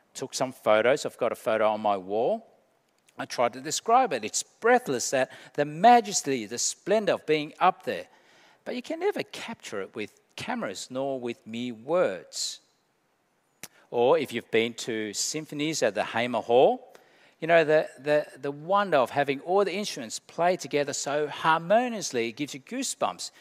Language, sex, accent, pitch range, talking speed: English, male, Australian, 140-185 Hz, 170 wpm